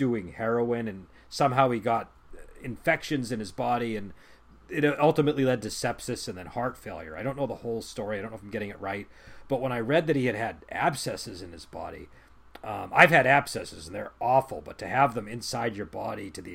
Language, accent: English, American